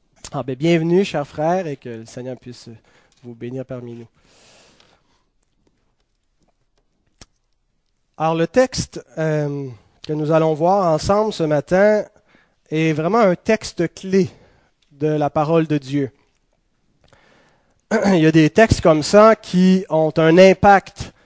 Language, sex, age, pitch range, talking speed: French, male, 30-49, 145-190 Hz, 125 wpm